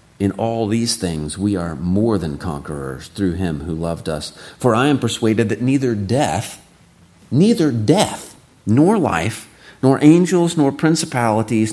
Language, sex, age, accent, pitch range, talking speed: English, male, 40-59, American, 85-125 Hz, 150 wpm